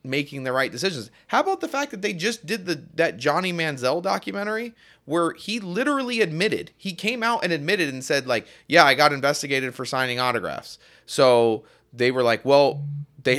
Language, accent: English, American